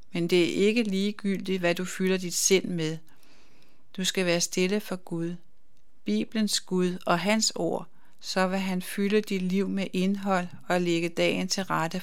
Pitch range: 175-195 Hz